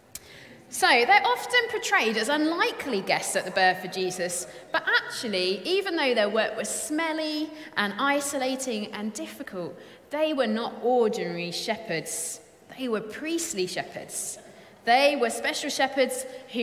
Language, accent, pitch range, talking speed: English, British, 205-270 Hz, 135 wpm